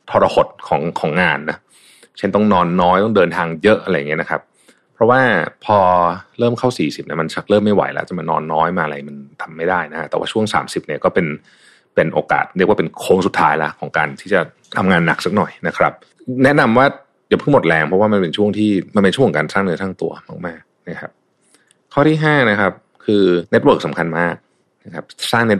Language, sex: Thai, male